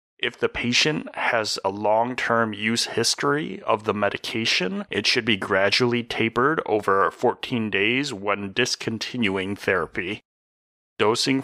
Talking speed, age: 120 wpm, 30-49